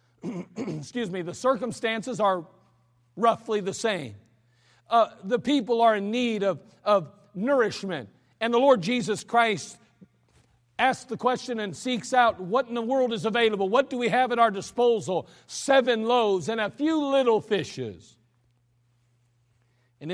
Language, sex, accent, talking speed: English, male, American, 145 wpm